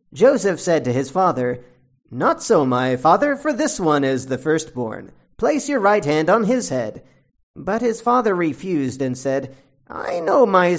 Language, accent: English, American